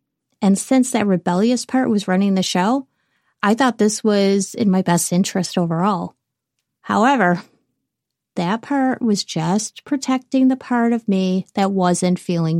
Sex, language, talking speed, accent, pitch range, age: female, English, 150 wpm, American, 185-235 Hz, 30-49